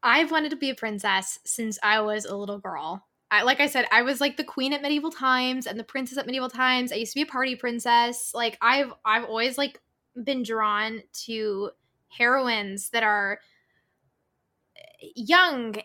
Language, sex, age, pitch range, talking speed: English, female, 20-39, 215-265 Hz, 180 wpm